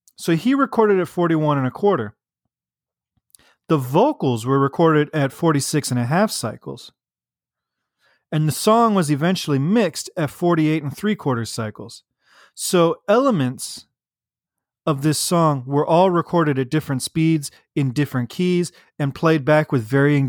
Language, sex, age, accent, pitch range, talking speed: English, male, 30-49, American, 125-160 Hz, 145 wpm